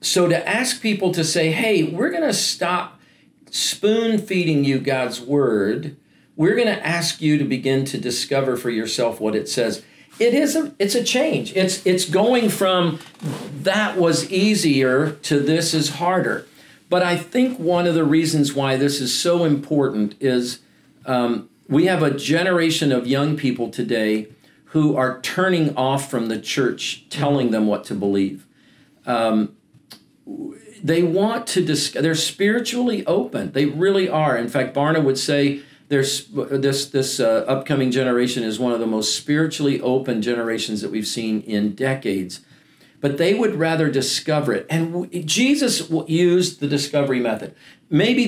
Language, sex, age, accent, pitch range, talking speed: English, male, 50-69, American, 130-180 Hz, 165 wpm